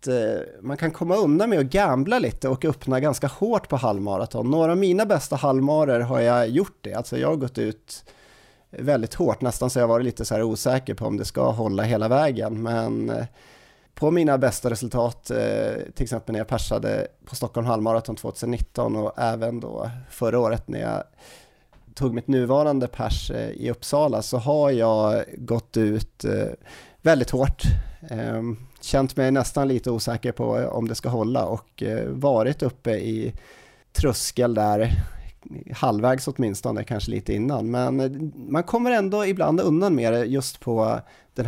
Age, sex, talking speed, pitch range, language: 30-49, male, 160 wpm, 115-140 Hz, Swedish